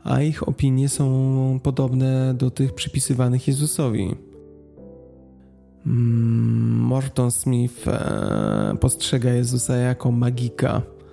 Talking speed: 80 wpm